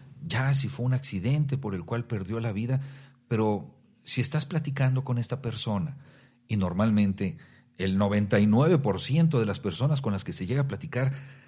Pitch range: 110-140 Hz